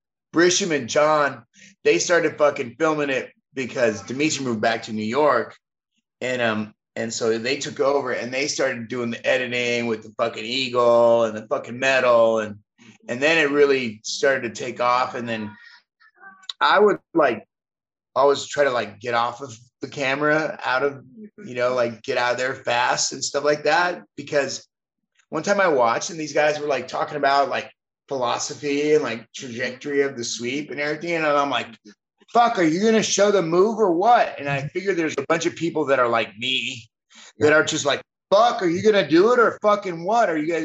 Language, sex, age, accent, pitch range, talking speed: English, male, 30-49, American, 120-170 Hz, 200 wpm